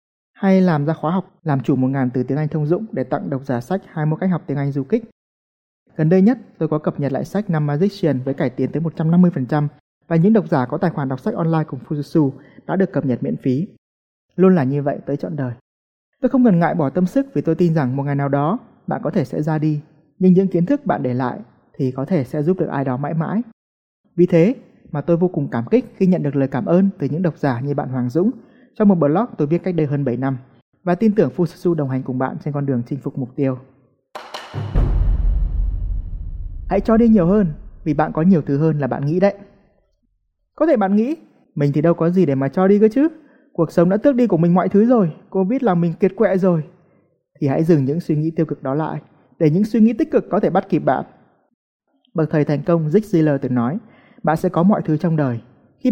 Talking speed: 255 wpm